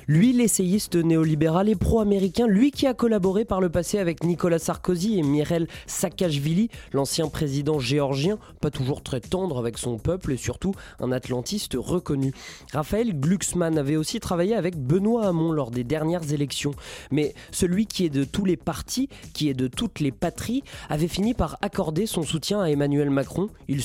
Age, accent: 20-39, French